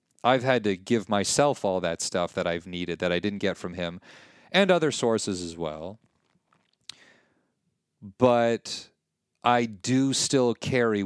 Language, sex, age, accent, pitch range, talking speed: English, male, 30-49, American, 90-110 Hz, 145 wpm